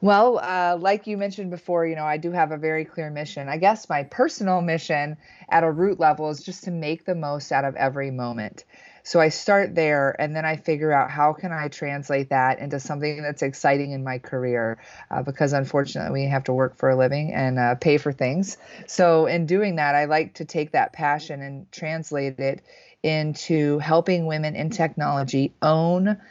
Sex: female